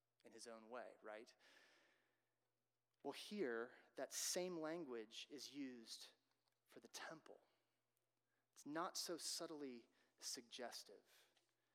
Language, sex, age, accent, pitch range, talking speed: English, male, 30-49, American, 120-155 Hz, 100 wpm